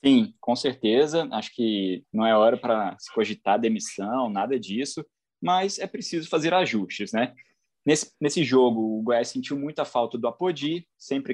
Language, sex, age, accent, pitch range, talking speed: Portuguese, male, 20-39, Brazilian, 120-155 Hz, 165 wpm